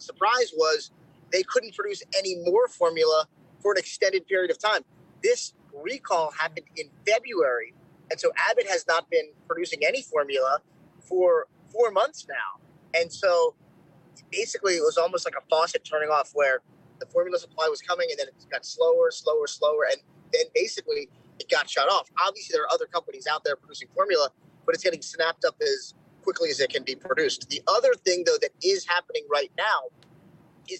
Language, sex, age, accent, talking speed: English, male, 30-49, American, 185 wpm